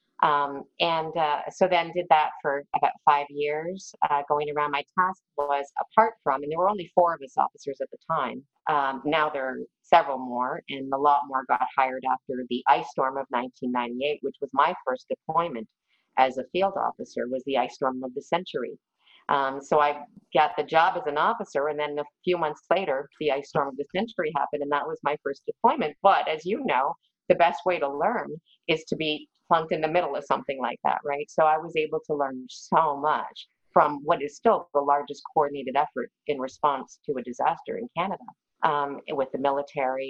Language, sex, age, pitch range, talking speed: English, female, 40-59, 135-170 Hz, 210 wpm